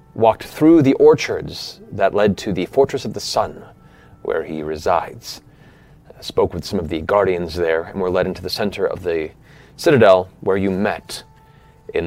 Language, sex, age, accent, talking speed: English, male, 30-49, American, 175 wpm